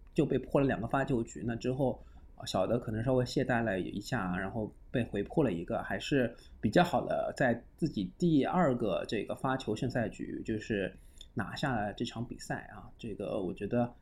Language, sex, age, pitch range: Chinese, male, 20-39, 115-145 Hz